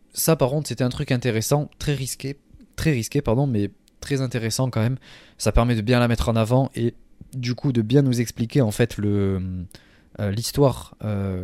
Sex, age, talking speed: male, 20-39, 190 wpm